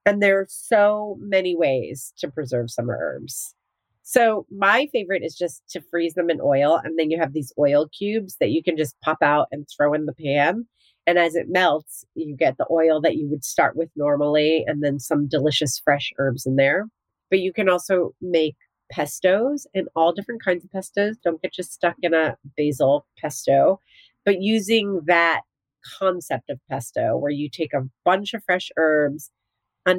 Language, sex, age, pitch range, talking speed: English, female, 30-49, 150-200 Hz, 190 wpm